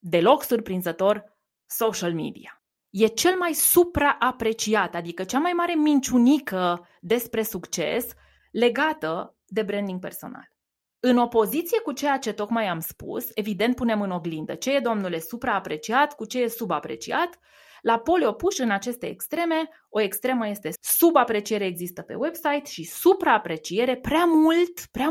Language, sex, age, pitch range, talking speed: Romanian, female, 20-39, 180-255 Hz, 135 wpm